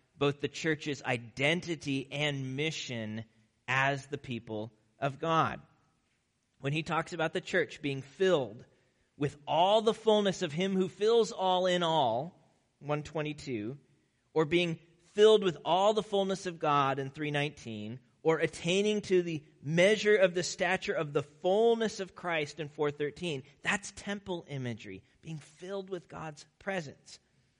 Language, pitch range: English, 145-185 Hz